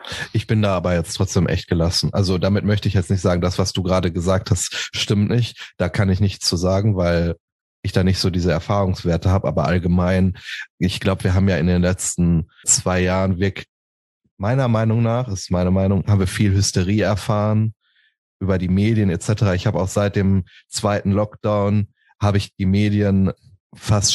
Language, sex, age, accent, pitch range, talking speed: German, male, 30-49, German, 95-105 Hz, 190 wpm